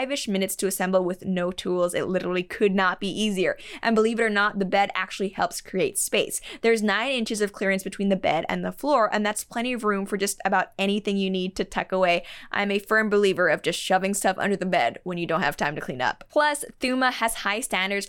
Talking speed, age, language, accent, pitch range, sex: 240 wpm, 20-39, English, American, 190-225 Hz, female